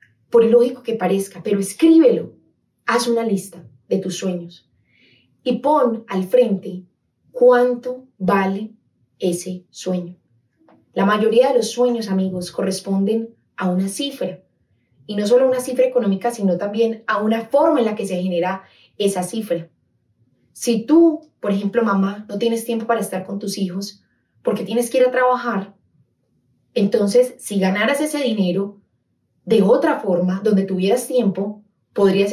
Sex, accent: female, Colombian